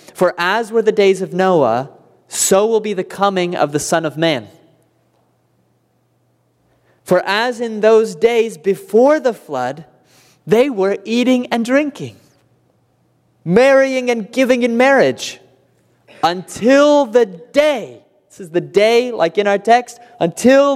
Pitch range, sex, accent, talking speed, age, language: 180-235 Hz, male, American, 135 wpm, 30-49, English